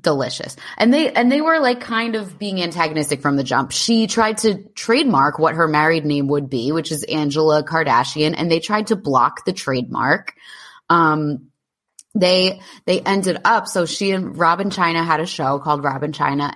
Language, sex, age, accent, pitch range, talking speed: English, female, 20-39, American, 140-175 Hz, 185 wpm